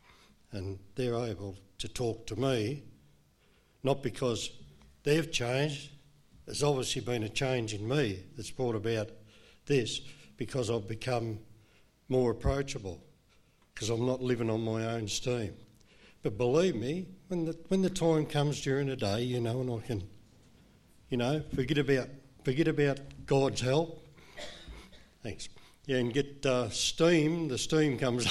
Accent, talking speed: Australian, 145 wpm